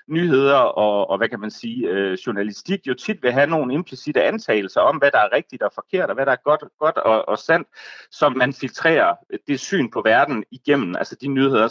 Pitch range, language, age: 125-190 Hz, Danish, 30-49